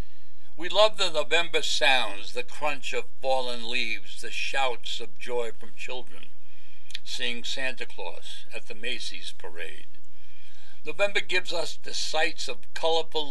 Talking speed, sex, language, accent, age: 135 wpm, male, English, American, 60-79